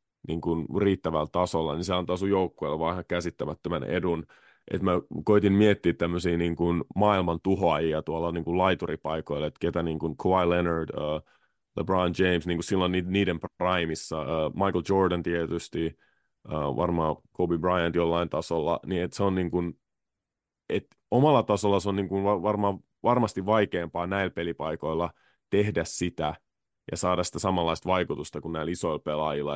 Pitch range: 80-95 Hz